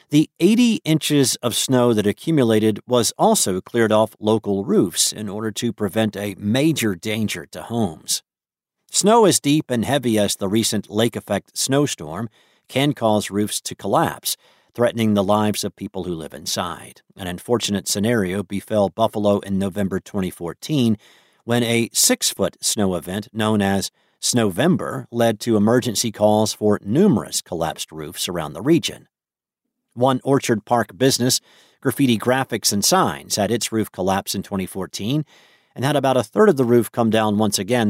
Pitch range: 100-125 Hz